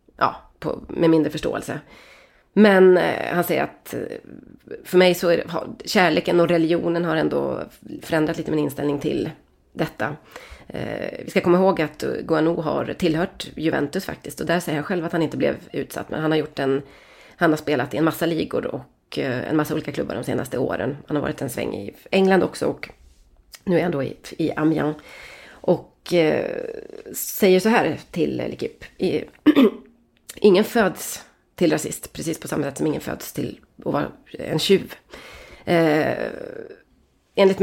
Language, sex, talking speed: Swedish, female, 180 wpm